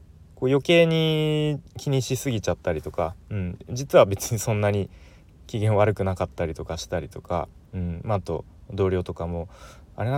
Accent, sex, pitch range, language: native, male, 85-110 Hz, Japanese